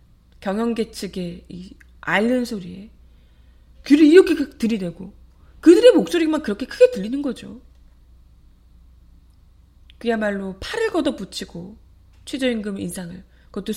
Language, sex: Korean, female